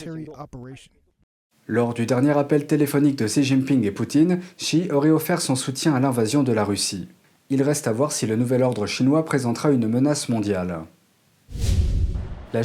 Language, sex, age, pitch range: French, male, 40-59, 115-155 Hz